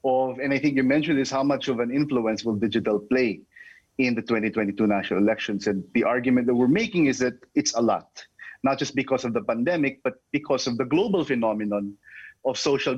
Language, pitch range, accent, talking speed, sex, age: English, 105-130 Hz, Filipino, 210 wpm, male, 30-49